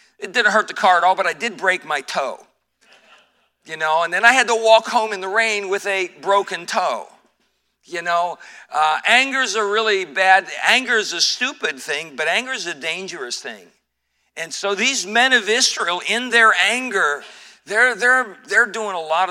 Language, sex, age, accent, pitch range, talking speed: English, male, 50-69, American, 155-220 Hz, 195 wpm